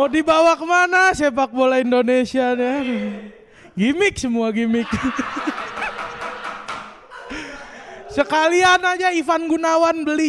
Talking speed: 95 wpm